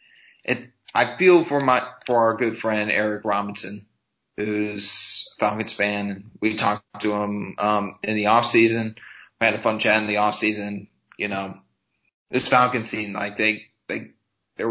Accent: American